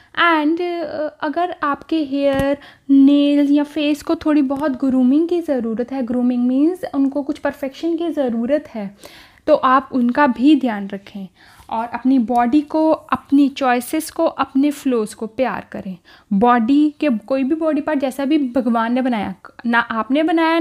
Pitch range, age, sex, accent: 255-305 Hz, 10-29, female, native